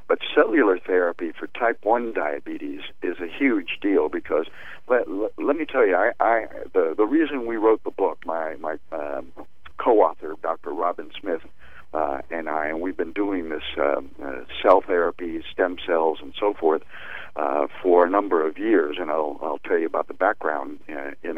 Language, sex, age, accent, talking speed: English, male, 60-79, American, 185 wpm